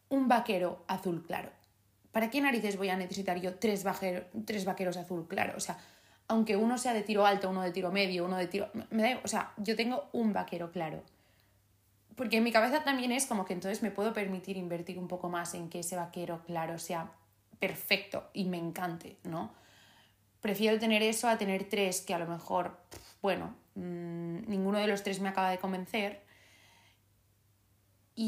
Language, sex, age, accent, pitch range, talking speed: Spanish, female, 20-39, Spanish, 170-210 Hz, 185 wpm